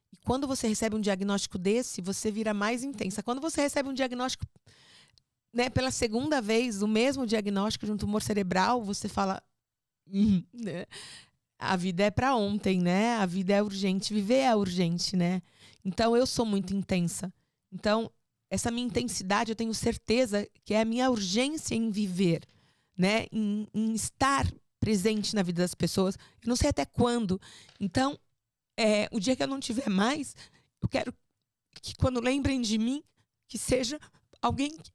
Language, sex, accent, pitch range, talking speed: Portuguese, female, Brazilian, 195-250 Hz, 165 wpm